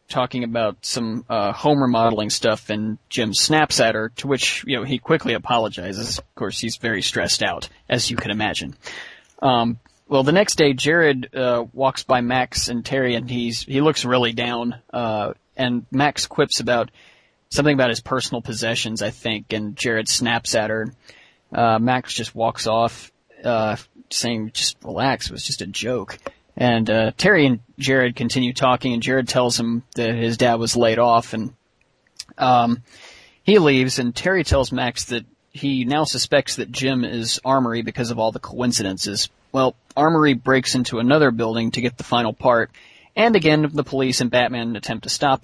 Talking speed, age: 180 wpm, 30-49